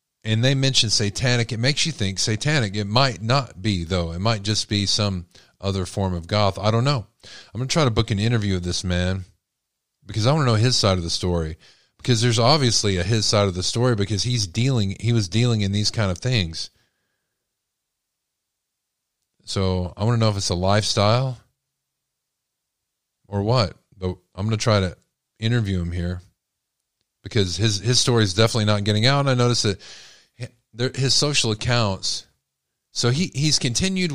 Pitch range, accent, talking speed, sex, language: 95-120 Hz, American, 190 wpm, male, English